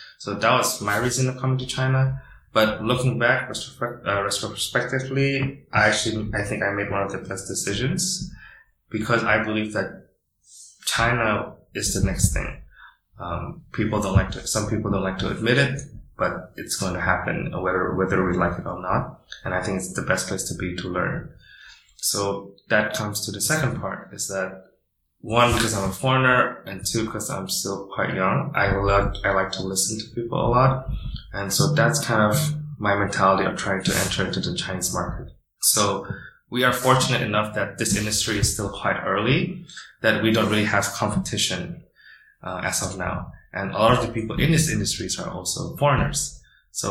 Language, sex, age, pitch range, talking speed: English, male, 20-39, 95-125 Hz, 190 wpm